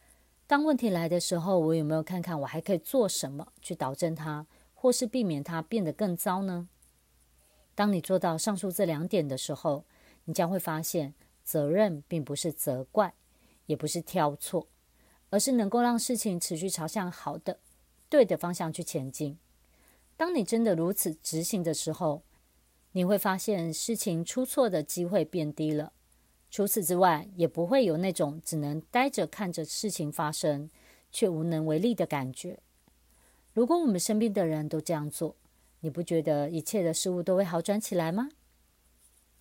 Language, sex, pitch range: Chinese, female, 155-200 Hz